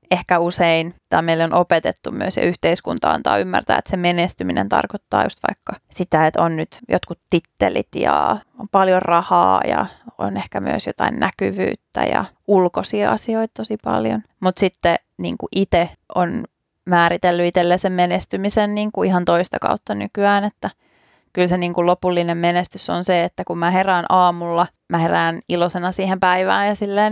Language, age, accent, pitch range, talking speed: Finnish, 20-39, native, 170-195 Hz, 160 wpm